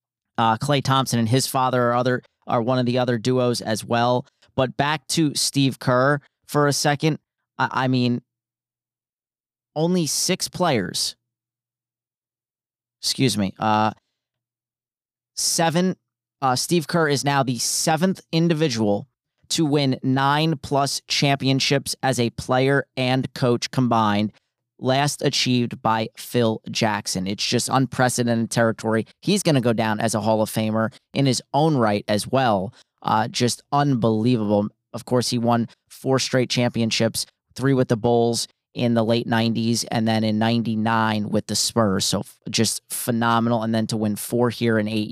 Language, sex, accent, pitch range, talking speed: English, male, American, 115-135 Hz, 150 wpm